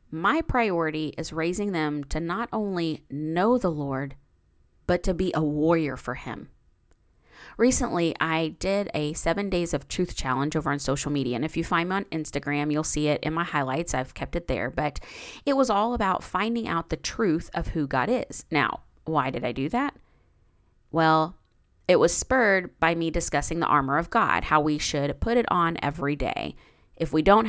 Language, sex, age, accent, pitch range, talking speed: English, female, 30-49, American, 150-235 Hz, 195 wpm